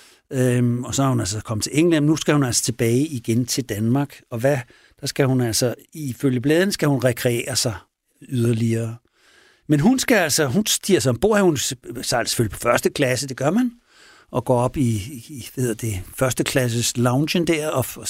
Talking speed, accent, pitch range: 190 wpm, native, 115-155 Hz